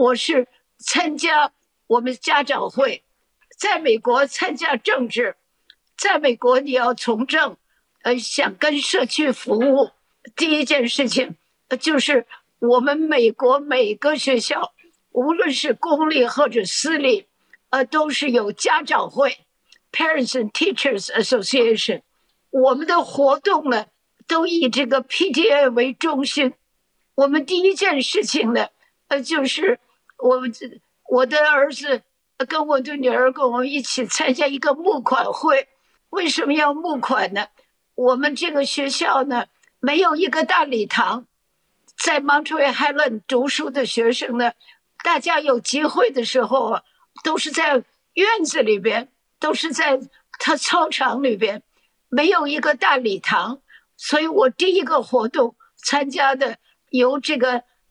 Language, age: English, 60-79